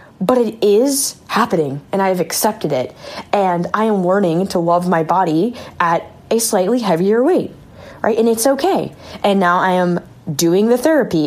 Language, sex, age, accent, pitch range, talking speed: English, female, 10-29, American, 180-275 Hz, 175 wpm